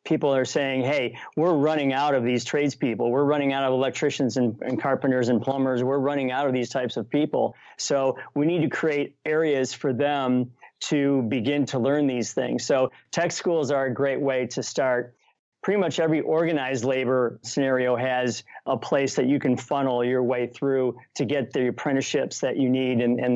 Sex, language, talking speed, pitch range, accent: male, English, 195 wpm, 125-150 Hz, American